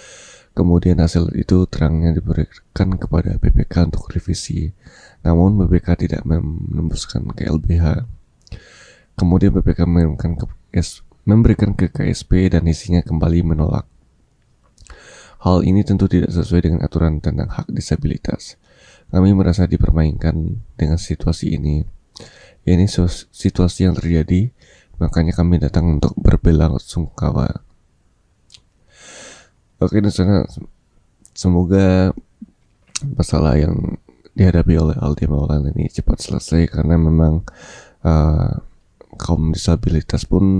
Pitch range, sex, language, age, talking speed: 80-95 Hz, male, Indonesian, 20-39, 105 wpm